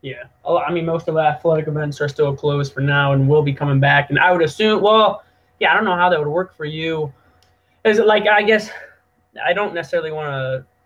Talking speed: 240 wpm